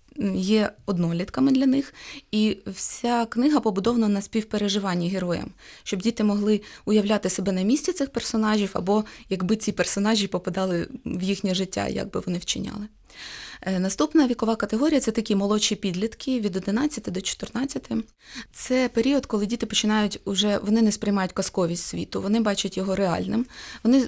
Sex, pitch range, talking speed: female, 185-225 Hz, 145 wpm